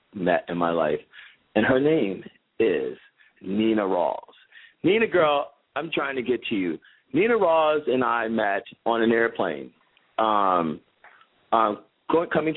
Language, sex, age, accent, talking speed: English, male, 40-59, American, 145 wpm